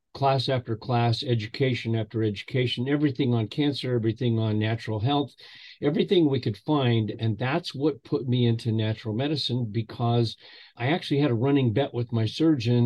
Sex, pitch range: male, 110-130 Hz